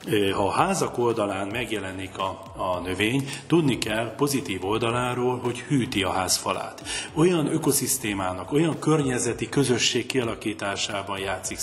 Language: Hungarian